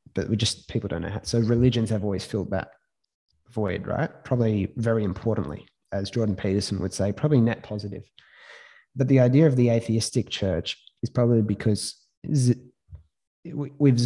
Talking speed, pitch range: 160 wpm, 100-115 Hz